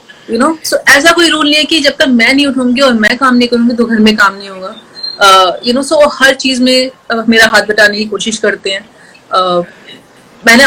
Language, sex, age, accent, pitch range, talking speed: Hindi, female, 30-49, native, 220-270 Hz, 200 wpm